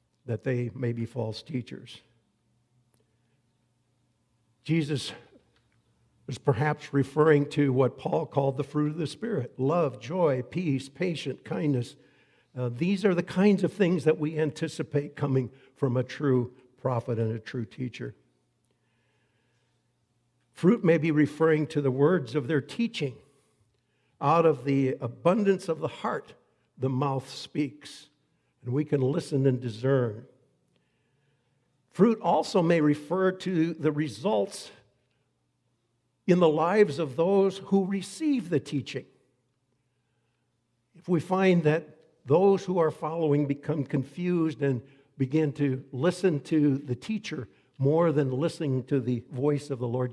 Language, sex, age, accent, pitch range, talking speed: English, male, 60-79, American, 125-160 Hz, 135 wpm